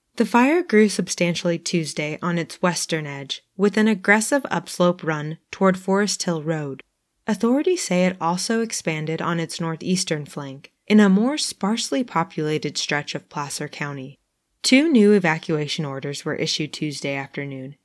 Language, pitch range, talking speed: English, 155-205 Hz, 150 wpm